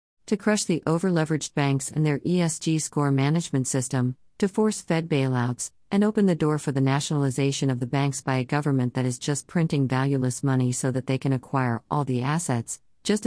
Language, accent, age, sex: English, American, 50-69, female